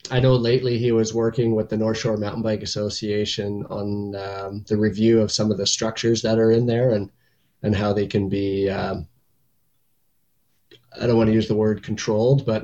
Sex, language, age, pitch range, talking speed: male, English, 20-39, 105-120 Hz, 200 wpm